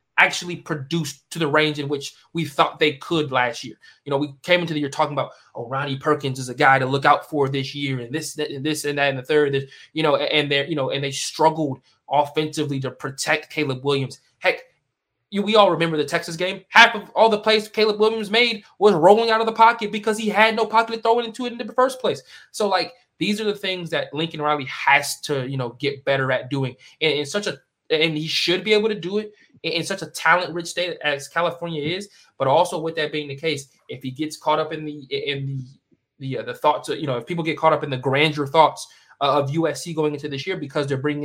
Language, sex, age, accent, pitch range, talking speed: English, male, 20-39, American, 135-175 Hz, 245 wpm